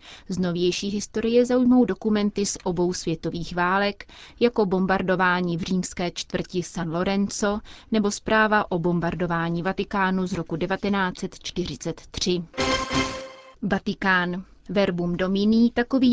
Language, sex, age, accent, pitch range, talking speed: Czech, female, 30-49, native, 175-210 Hz, 105 wpm